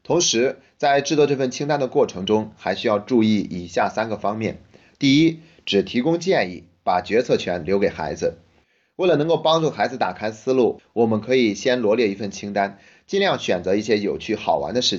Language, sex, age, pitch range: Chinese, male, 30-49, 95-135 Hz